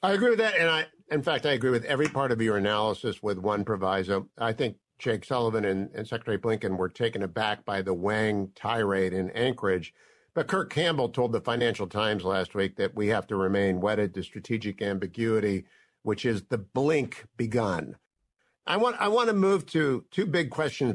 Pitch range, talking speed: 105-145 Hz, 200 wpm